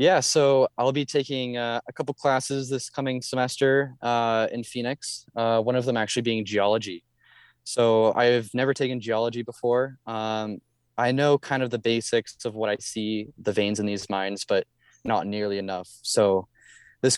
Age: 20-39